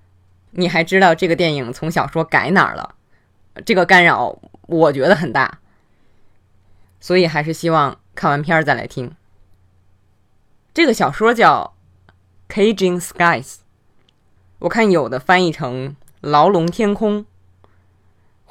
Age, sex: 20-39, female